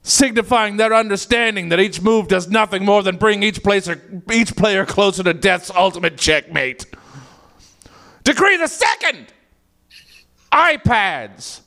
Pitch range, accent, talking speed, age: 170-240 Hz, American, 130 wpm, 40-59